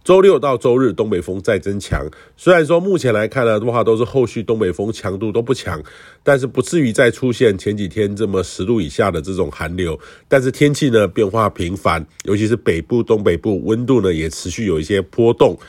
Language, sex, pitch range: Chinese, male, 95-130 Hz